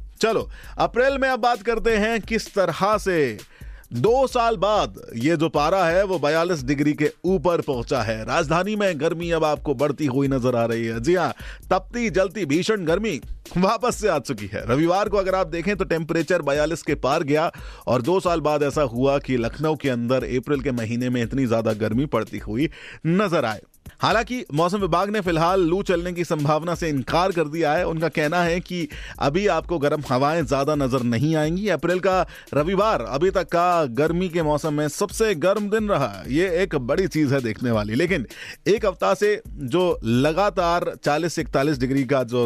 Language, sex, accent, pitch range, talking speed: Hindi, male, native, 135-185 Hz, 195 wpm